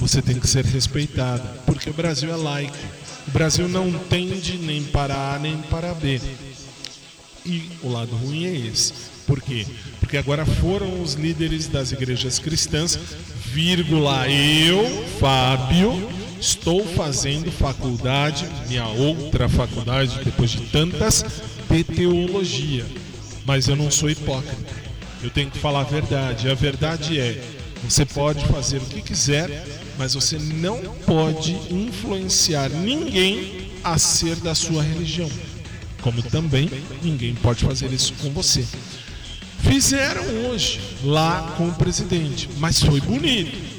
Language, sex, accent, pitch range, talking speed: Portuguese, male, Brazilian, 130-165 Hz, 135 wpm